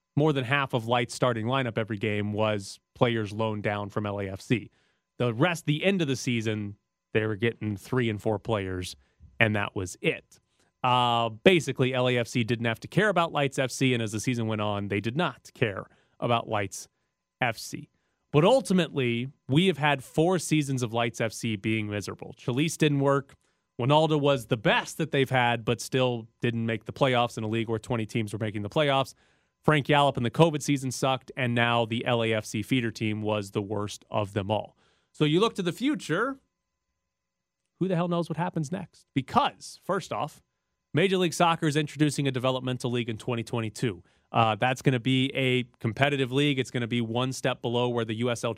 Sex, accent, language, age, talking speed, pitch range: male, American, English, 30-49, 195 wpm, 110-140 Hz